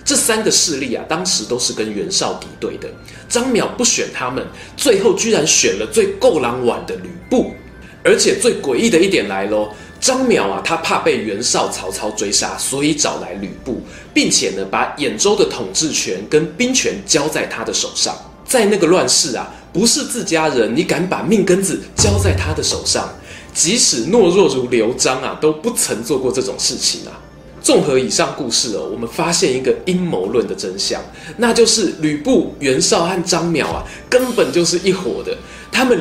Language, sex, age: Chinese, male, 20-39